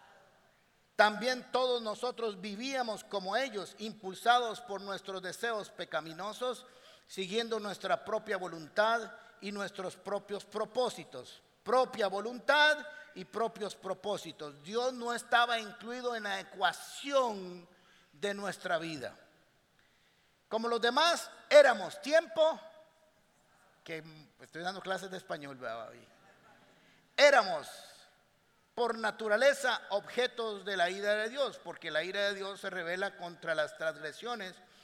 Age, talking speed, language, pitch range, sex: 50-69, 110 wpm, Spanish, 185-245 Hz, male